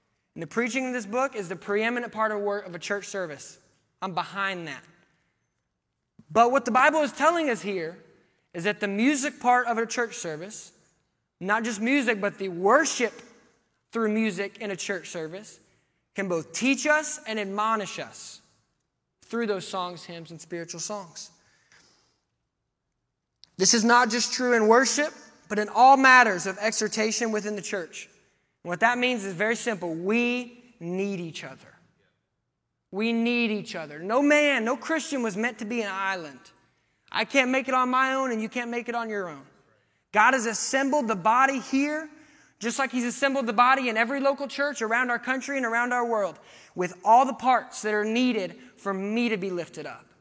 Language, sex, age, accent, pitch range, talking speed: English, male, 20-39, American, 195-250 Hz, 185 wpm